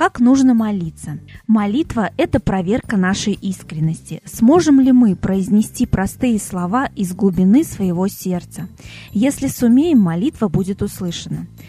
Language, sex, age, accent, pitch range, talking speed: Russian, female, 20-39, native, 185-240 Hz, 120 wpm